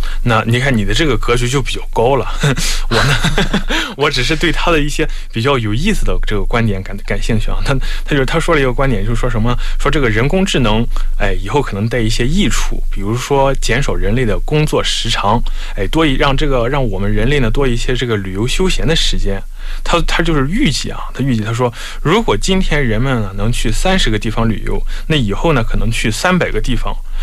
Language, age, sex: Korean, 20-39, male